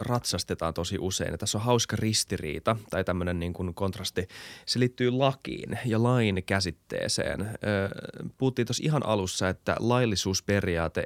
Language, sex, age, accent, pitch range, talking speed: Finnish, male, 30-49, native, 90-115 Hz, 135 wpm